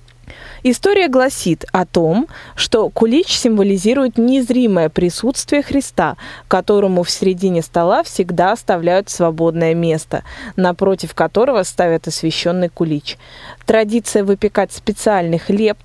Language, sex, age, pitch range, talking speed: Russian, female, 20-39, 175-230 Hz, 100 wpm